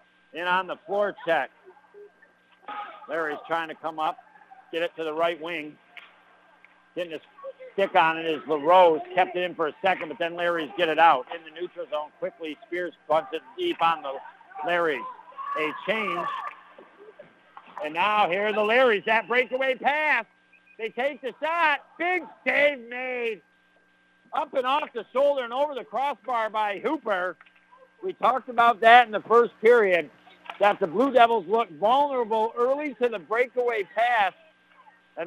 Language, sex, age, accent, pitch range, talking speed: English, male, 60-79, American, 175-255 Hz, 160 wpm